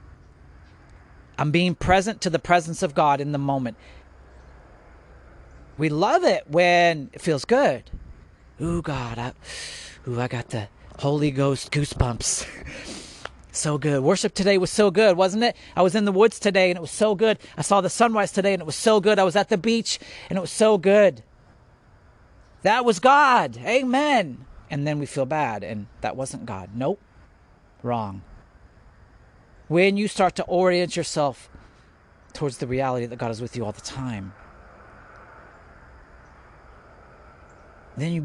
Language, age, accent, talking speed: English, 40-59, American, 160 wpm